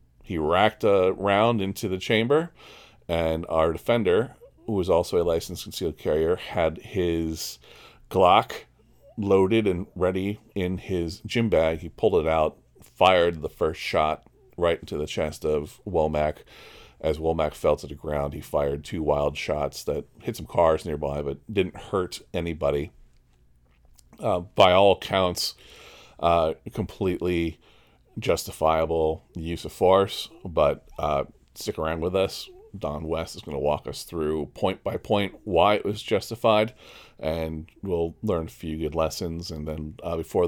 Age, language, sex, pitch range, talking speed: 40-59, English, male, 75-105 Hz, 150 wpm